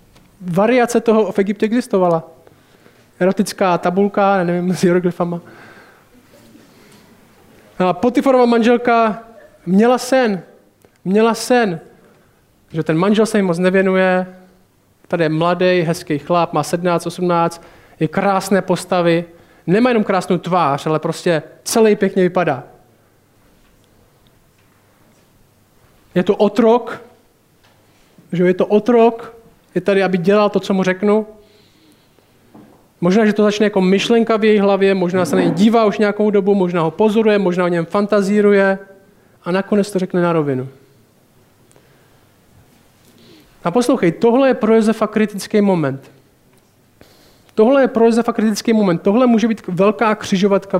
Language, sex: Czech, male